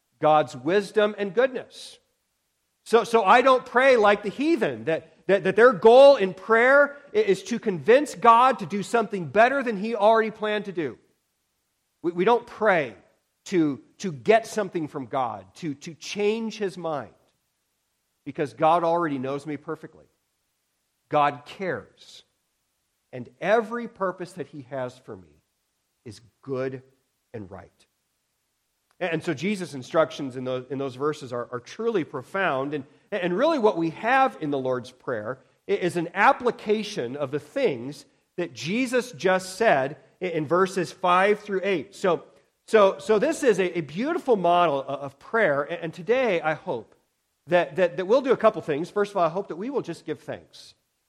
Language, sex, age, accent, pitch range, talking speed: English, male, 50-69, American, 145-215 Hz, 165 wpm